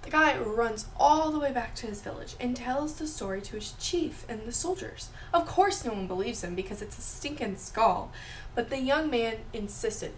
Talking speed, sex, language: 210 wpm, female, English